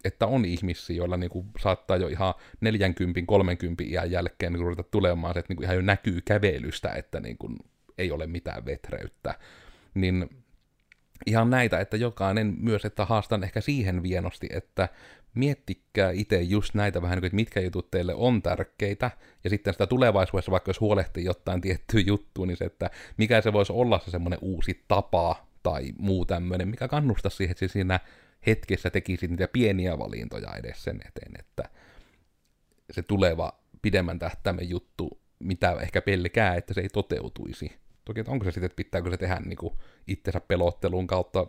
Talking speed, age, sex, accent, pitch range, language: 165 wpm, 30-49, male, native, 90-105 Hz, Finnish